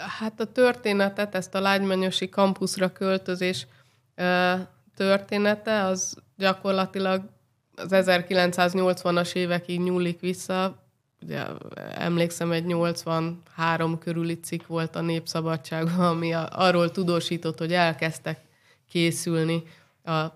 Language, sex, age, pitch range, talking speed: Hungarian, female, 20-39, 155-175 Hz, 95 wpm